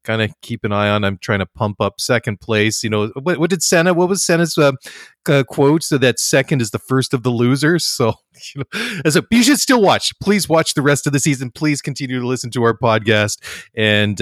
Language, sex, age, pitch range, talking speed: English, male, 30-49, 115-140 Hz, 245 wpm